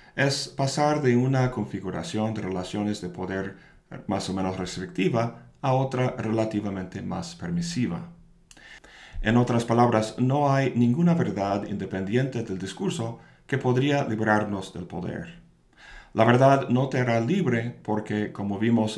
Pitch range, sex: 100-130 Hz, male